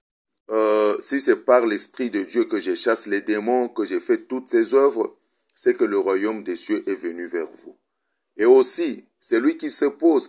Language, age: French, 50-69